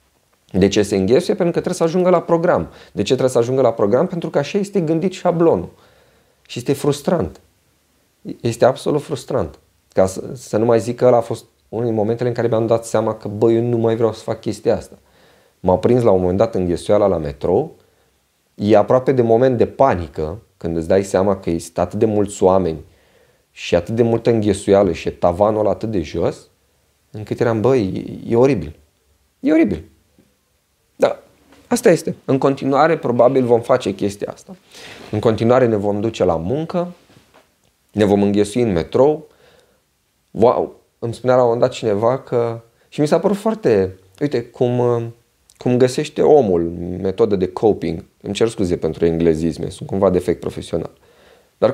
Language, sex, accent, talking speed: Romanian, male, native, 180 wpm